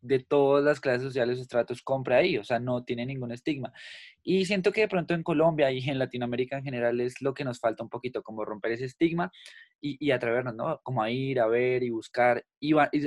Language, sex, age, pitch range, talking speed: Spanish, male, 20-39, 120-145 Hz, 240 wpm